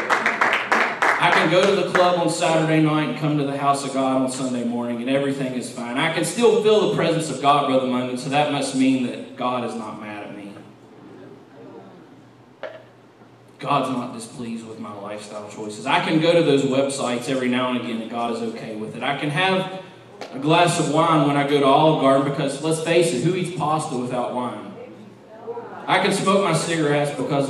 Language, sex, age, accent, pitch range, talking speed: English, male, 20-39, American, 125-165 Hz, 210 wpm